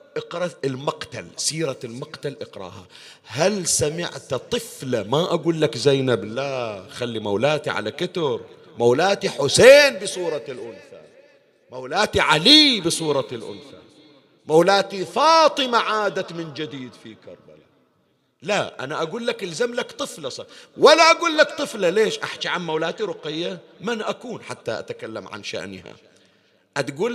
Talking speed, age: 125 wpm, 50-69